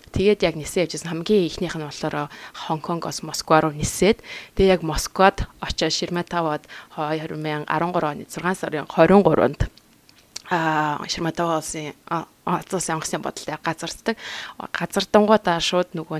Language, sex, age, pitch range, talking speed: English, female, 20-39, 155-185 Hz, 125 wpm